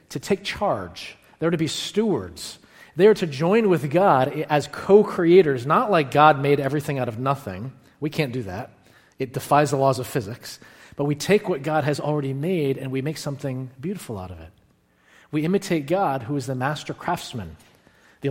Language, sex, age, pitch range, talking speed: English, male, 40-59, 125-155 Hz, 185 wpm